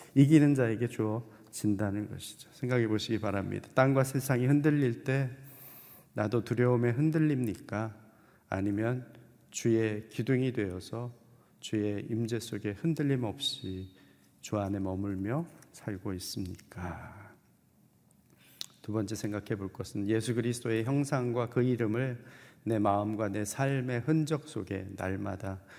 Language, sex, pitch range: Korean, male, 105-135 Hz